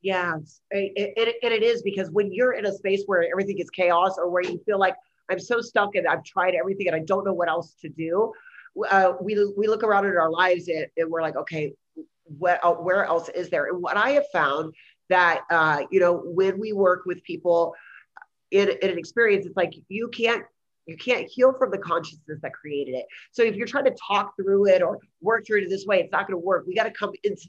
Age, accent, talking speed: 30-49, American, 240 wpm